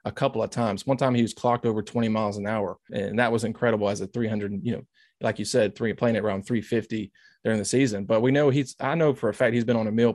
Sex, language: male, English